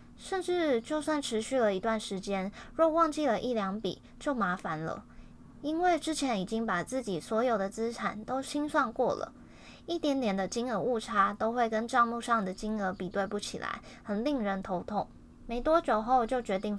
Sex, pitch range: female, 200-270 Hz